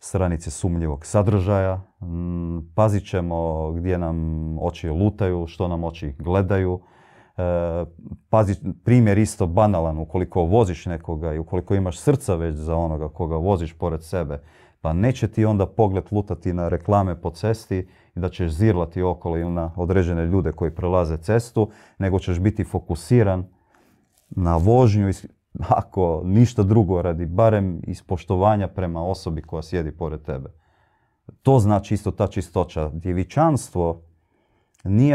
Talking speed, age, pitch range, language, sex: 135 wpm, 30-49, 85-105 Hz, Croatian, male